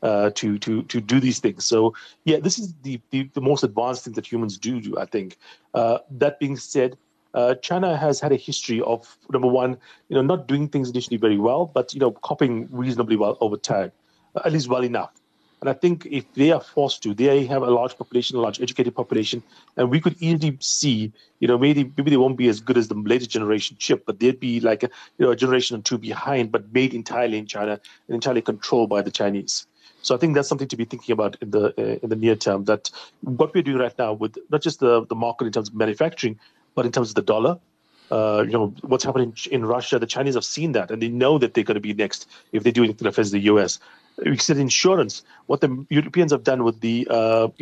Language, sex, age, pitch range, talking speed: English, male, 40-59, 115-140 Hz, 245 wpm